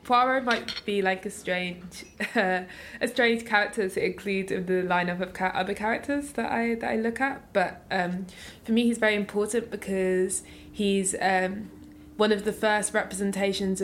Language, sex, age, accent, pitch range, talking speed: English, female, 20-39, British, 175-200 Hz, 175 wpm